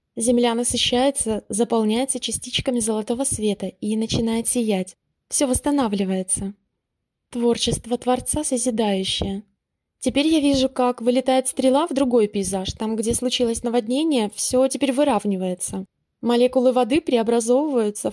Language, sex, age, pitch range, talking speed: Russian, female, 20-39, 215-260 Hz, 110 wpm